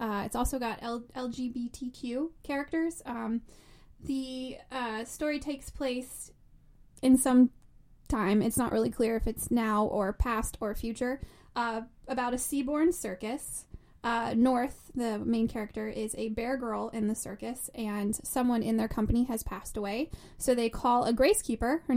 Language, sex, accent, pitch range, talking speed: English, female, American, 220-255 Hz, 160 wpm